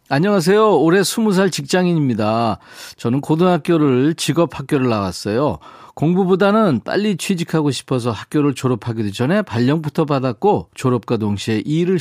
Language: Korean